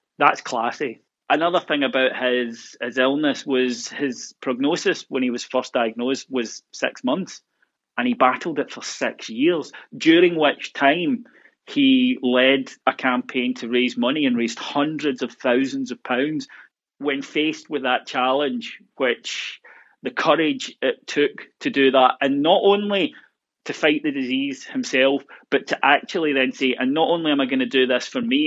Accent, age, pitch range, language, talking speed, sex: British, 30-49, 125-145 Hz, English, 170 wpm, male